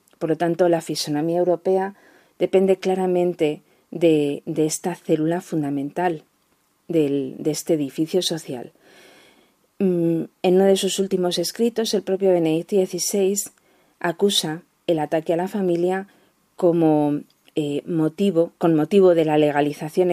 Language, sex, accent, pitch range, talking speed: Spanish, female, Spanish, 155-185 Hz, 115 wpm